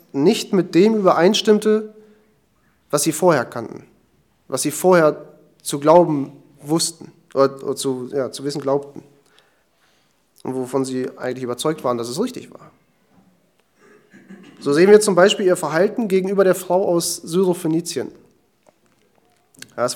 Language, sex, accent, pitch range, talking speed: German, male, German, 140-185 Hz, 130 wpm